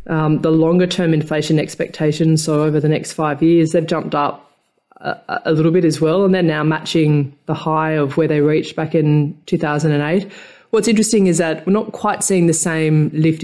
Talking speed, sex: 195 wpm, female